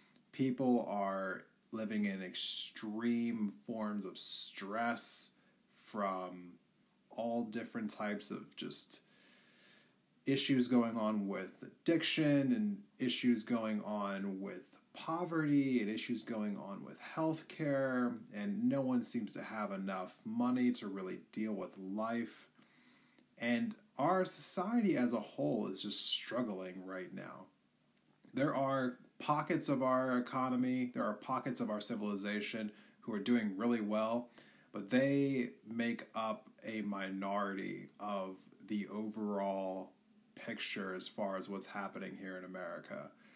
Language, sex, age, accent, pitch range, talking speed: English, male, 30-49, American, 105-160 Hz, 125 wpm